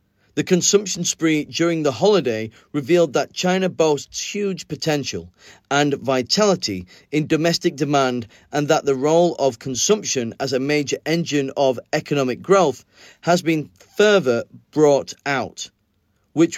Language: Chinese